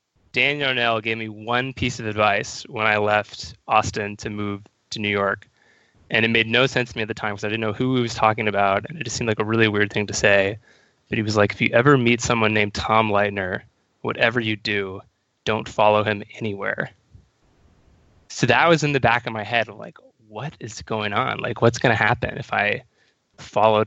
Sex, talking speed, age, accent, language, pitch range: male, 220 wpm, 20-39, American, English, 105-120 Hz